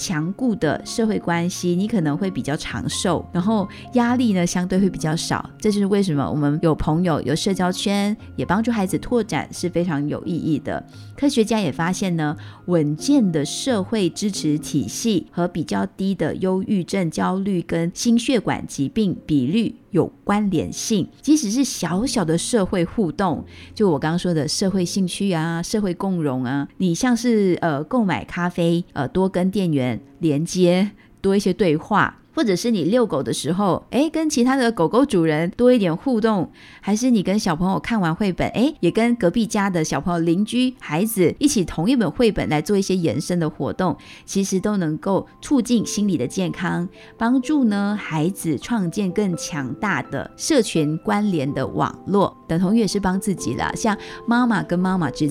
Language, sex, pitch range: Chinese, female, 165-220 Hz